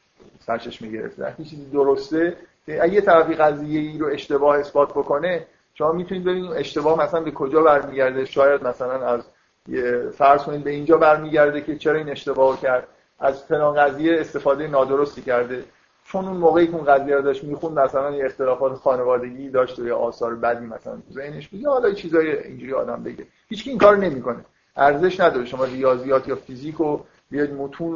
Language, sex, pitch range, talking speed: Persian, male, 135-175 Hz, 165 wpm